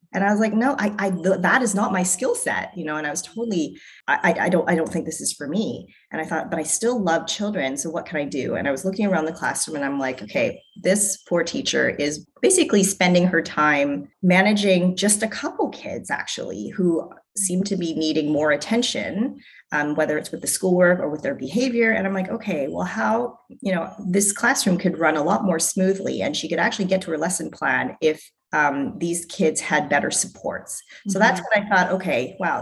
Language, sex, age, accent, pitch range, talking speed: English, female, 30-49, American, 160-200 Hz, 225 wpm